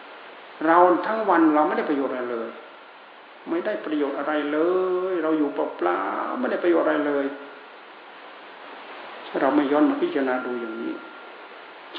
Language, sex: Thai, male